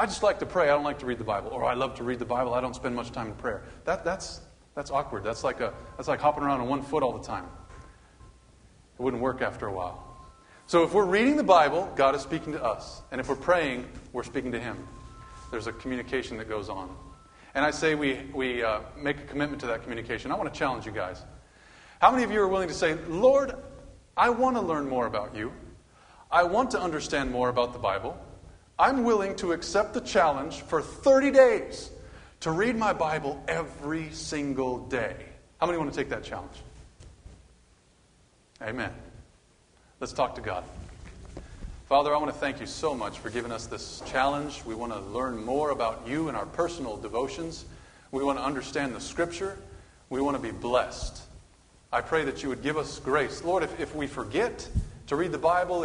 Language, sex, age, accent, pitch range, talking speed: English, male, 30-49, American, 115-155 Hz, 210 wpm